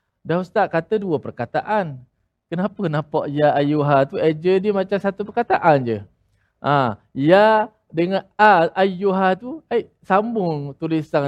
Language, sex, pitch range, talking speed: Malayalam, male, 135-190 Hz, 135 wpm